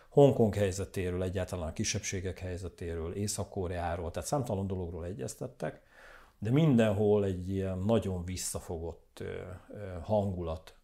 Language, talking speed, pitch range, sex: Hungarian, 100 wpm, 90-110 Hz, male